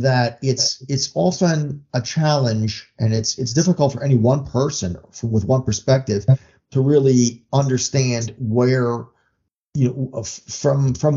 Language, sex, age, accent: English, male, 50-69, American